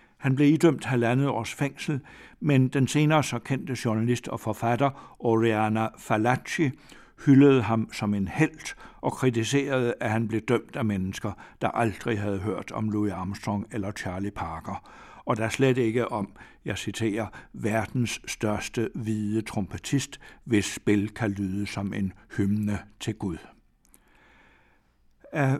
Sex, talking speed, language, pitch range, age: male, 145 wpm, Danish, 105-130 Hz, 60-79